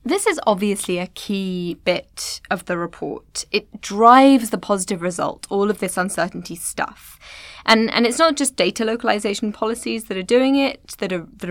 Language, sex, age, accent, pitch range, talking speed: English, female, 10-29, British, 190-250 Hz, 175 wpm